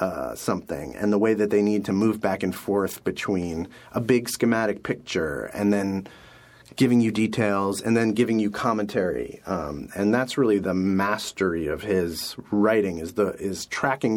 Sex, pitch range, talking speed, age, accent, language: male, 95-120 Hz, 175 wpm, 30-49, American, English